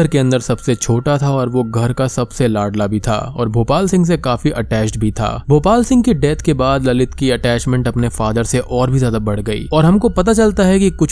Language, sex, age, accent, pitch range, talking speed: Hindi, male, 20-39, native, 110-140 Hz, 245 wpm